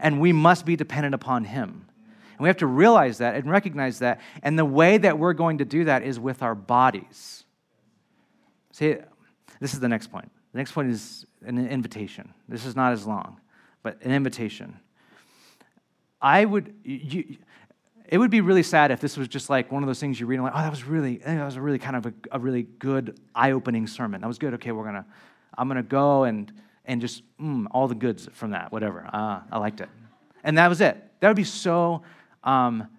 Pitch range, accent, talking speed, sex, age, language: 125-170 Hz, American, 220 wpm, male, 30-49, English